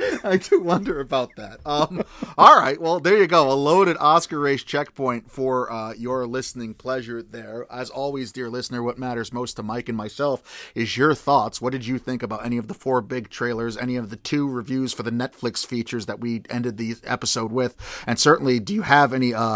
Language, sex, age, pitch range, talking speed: English, male, 30-49, 115-130 Hz, 210 wpm